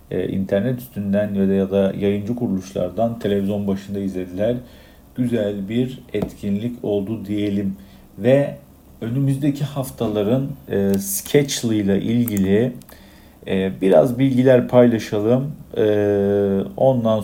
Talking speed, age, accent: 95 wpm, 50-69, native